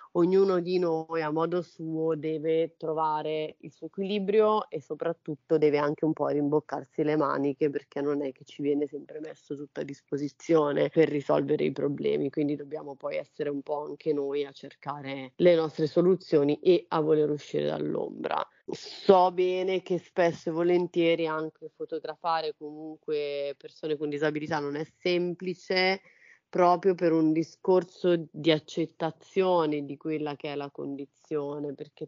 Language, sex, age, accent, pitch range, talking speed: Italian, female, 30-49, native, 145-165 Hz, 150 wpm